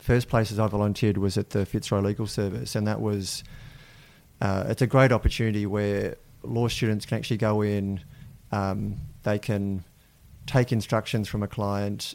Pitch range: 100-115 Hz